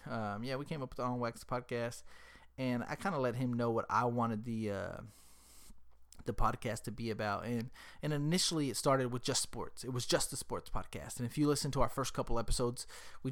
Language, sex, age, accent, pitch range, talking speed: English, male, 30-49, American, 115-140 Hz, 230 wpm